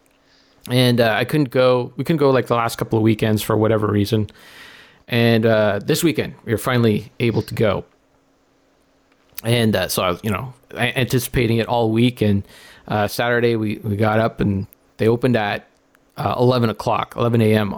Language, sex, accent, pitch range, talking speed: English, male, American, 110-140 Hz, 180 wpm